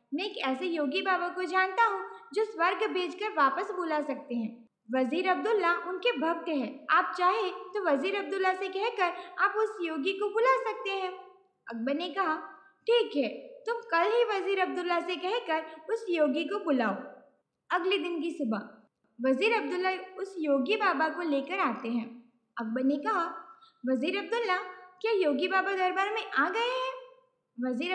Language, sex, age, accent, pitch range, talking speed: Gujarati, female, 20-39, native, 265-390 Hz, 165 wpm